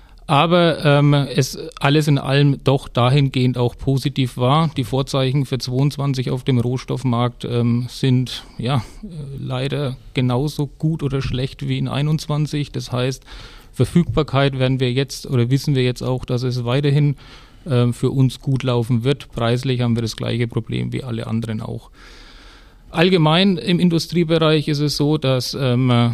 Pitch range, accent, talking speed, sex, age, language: 120-135 Hz, German, 155 wpm, male, 40-59, German